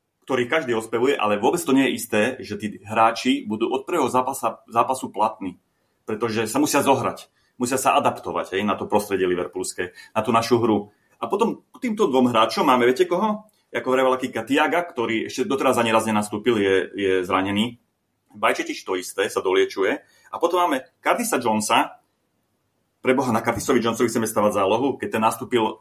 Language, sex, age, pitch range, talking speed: Slovak, male, 30-49, 105-130 Hz, 170 wpm